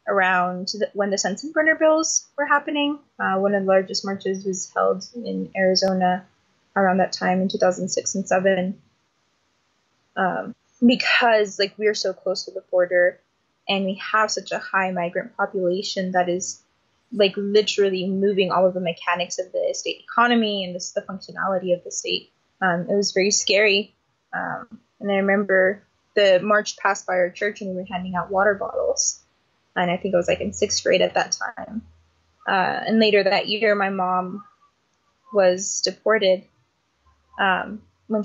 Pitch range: 185-215 Hz